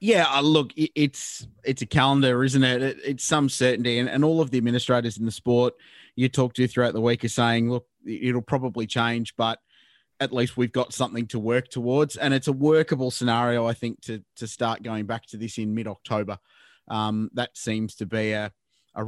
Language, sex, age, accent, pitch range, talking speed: English, male, 20-39, Australian, 115-135 Hz, 200 wpm